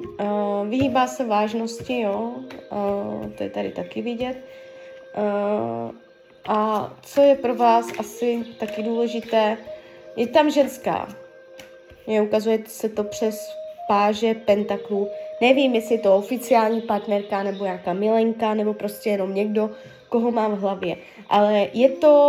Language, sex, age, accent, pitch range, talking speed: Czech, female, 20-39, native, 210-270 Hz, 115 wpm